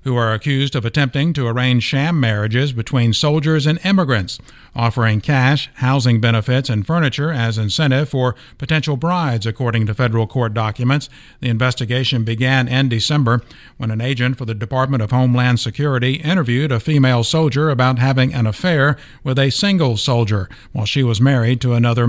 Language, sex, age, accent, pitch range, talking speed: English, male, 50-69, American, 120-140 Hz, 165 wpm